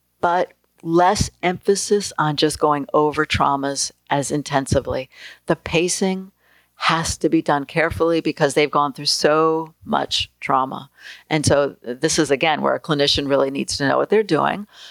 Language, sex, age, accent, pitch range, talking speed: English, female, 50-69, American, 140-165 Hz, 155 wpm